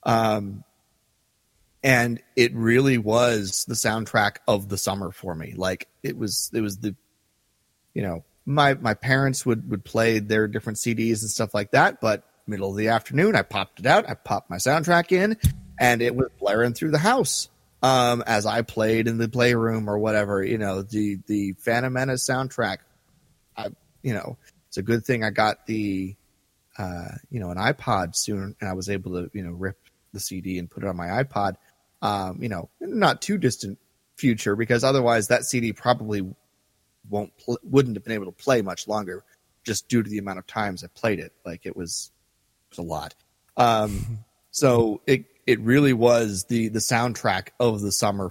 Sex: male